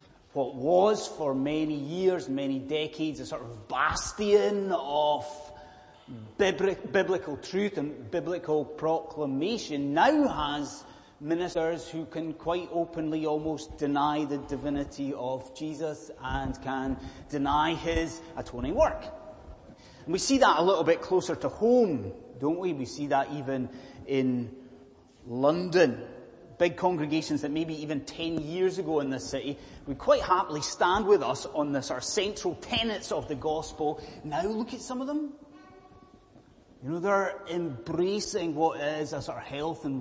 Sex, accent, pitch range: male, British, 140-200 Hz